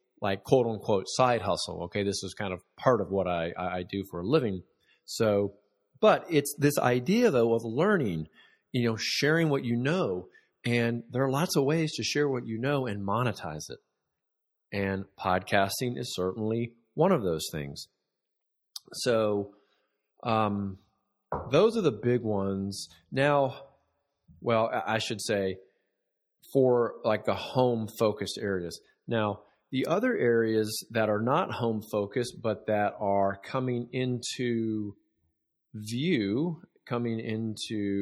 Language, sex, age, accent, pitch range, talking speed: English, male, 40-59, American, 100-130 Hz, 140 wpm